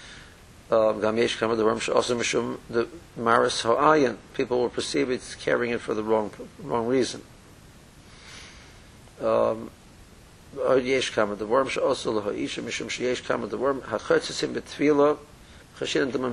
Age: 50-69